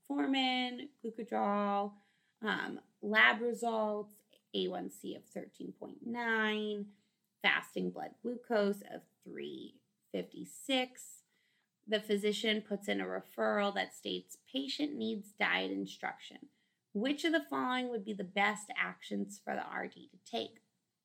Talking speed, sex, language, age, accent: 105 wpm, female, English, 20-39, American